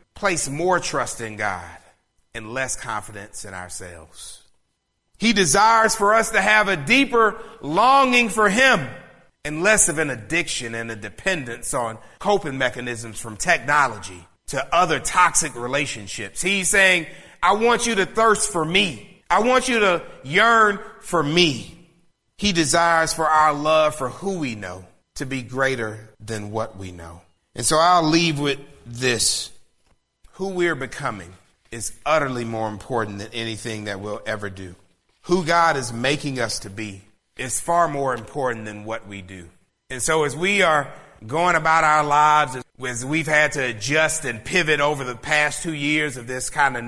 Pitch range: 110-180 Hz